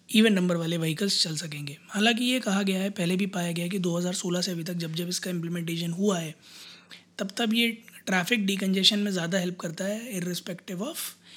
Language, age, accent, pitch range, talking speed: Hindi, 20-39, native, 180-215 Hz, 200 wpm